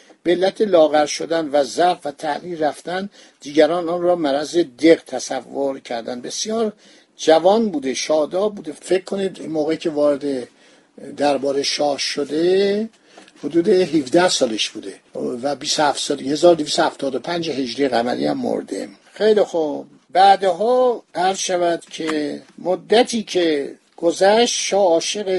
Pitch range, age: 155-195 Hz, 60-79